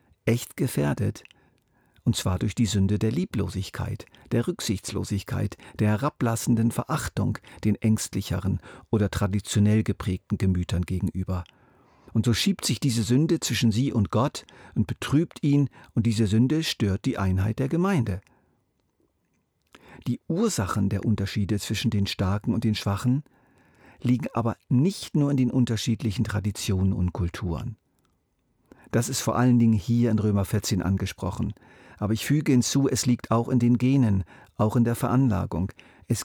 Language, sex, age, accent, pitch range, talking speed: German, male, 50-69, German, 100-125 Hz, 145 wpm